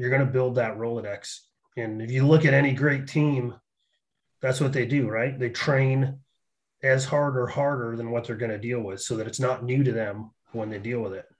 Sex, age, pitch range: male, 30-49, 120-140 Hz